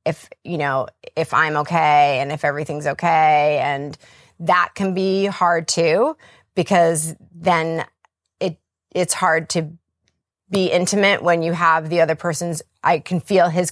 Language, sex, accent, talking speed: English, female, American, 150 wpm